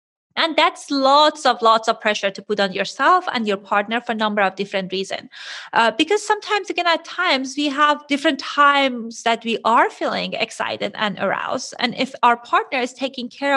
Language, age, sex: English, 30-49, female